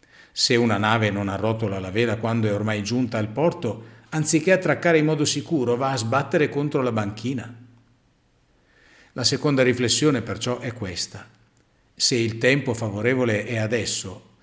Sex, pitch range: male, 110-140 Hz